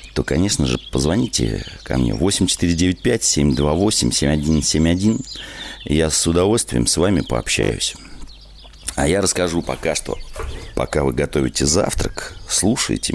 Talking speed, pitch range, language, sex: 105 wpm, 70-85 Hz, Russian, male